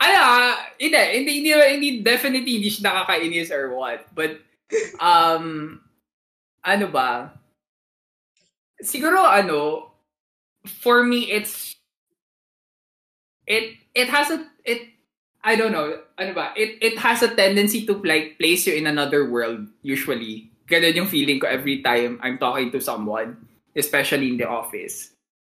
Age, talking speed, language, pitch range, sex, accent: 20-39, 130 wpm, Filipino, 140-200 Hz, male, native